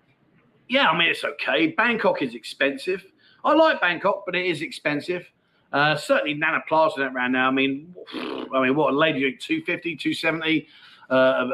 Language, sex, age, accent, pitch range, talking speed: English, male, 30-49, British, 150-190 Hz, 160 wpm